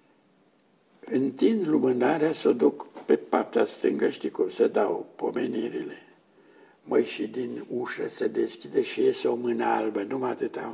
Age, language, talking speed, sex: 60-79, Romanian, 150 wpm, male